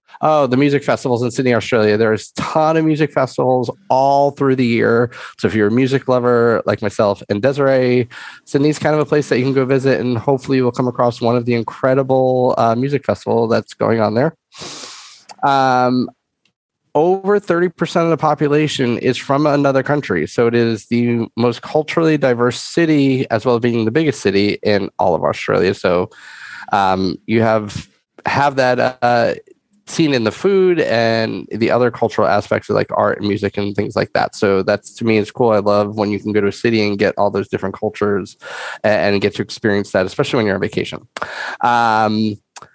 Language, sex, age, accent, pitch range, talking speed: English, male, 30-49, American, 115-140 Hz, 195 wpm